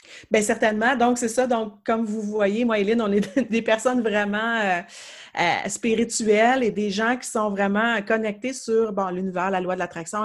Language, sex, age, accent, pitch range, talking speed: French, female, 30-49, Canadian, 200-240 Hz, 195 wpm